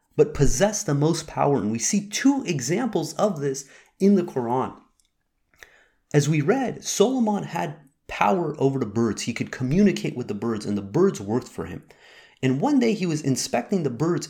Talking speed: 185 wpm